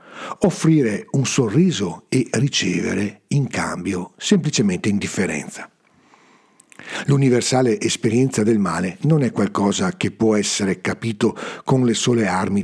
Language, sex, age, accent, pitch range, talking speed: Italian, male, 50-69, native, 110-160 Hz, 115 wpm